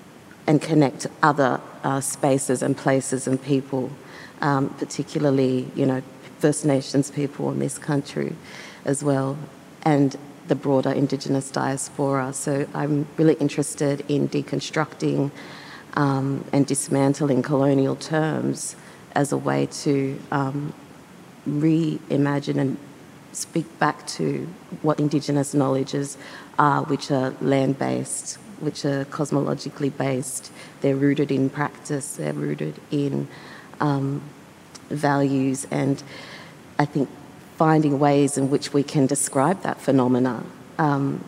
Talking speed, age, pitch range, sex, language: 115 wpm, 30-49, 135-150 Hz, female, English